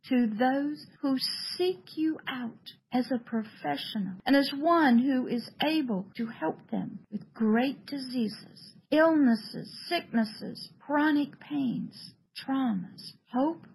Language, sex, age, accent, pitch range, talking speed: English, female, 50-69, American, 205-260 Hz, 120 wpm